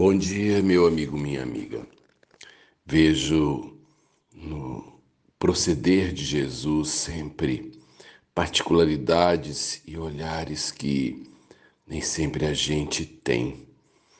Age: 60-79